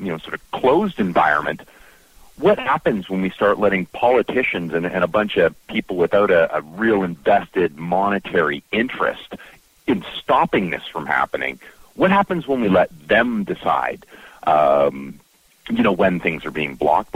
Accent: American